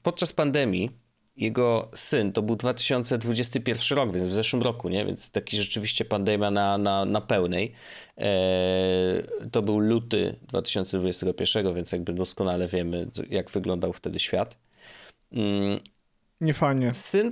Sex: male